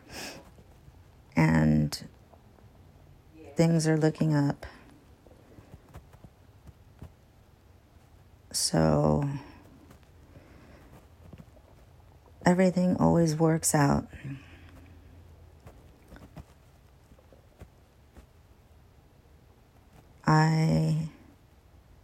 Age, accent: 40-59, American